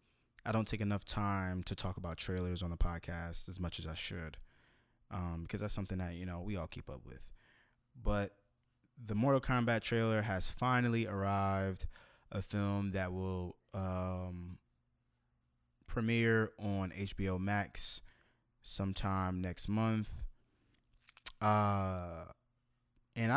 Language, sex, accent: English, male, American